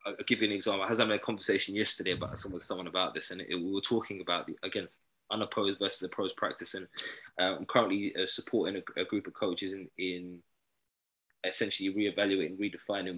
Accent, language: British, English